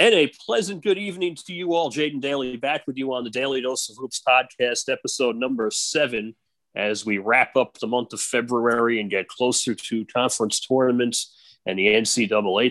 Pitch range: 105-135 Hz